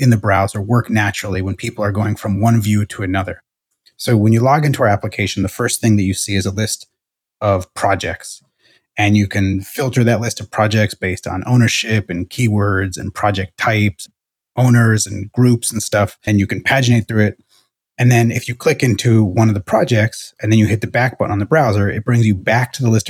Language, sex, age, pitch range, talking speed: English, male, 30-49, 100-120 Hz, 225 wpm